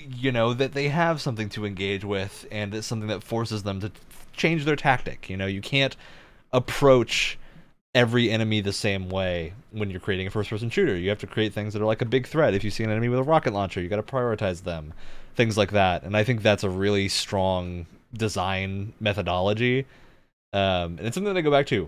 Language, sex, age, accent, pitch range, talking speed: English, male, 30-49, American, 95-125 Hz, 225 wpm